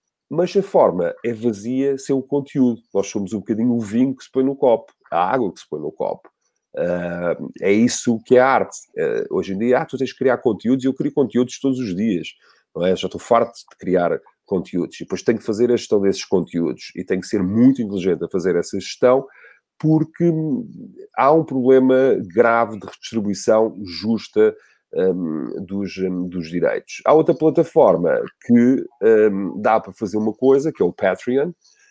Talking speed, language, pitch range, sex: 185 wpm, Portuguese, 95-145 Hz, male